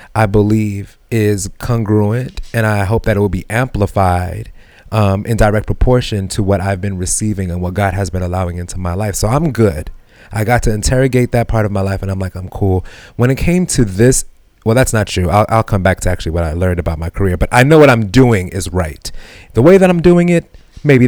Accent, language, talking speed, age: American, English, 235 wpm, 30-49